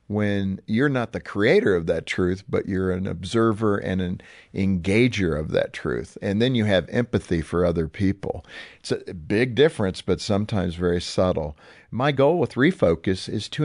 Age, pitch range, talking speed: 50-69, 95-145 Hz, 175 wpm